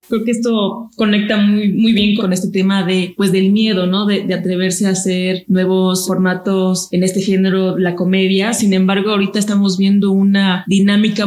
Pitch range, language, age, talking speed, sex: 185-205 Hz, Spanish, 20-39, 180 wpm, female